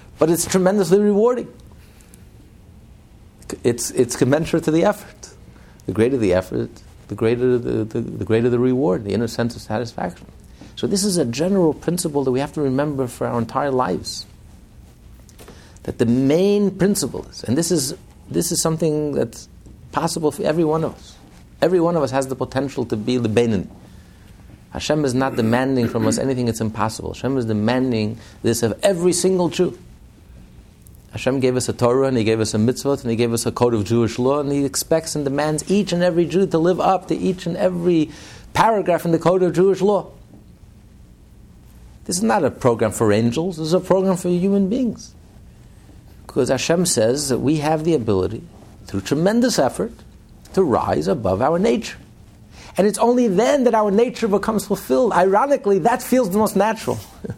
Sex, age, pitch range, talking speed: male, 50-69, 115-180 Hz, 185 wpm